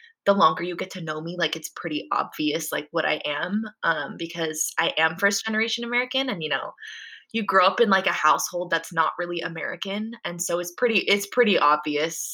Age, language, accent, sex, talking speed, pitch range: 20-39, English, American, female, 210 wpm, 165-200 Hz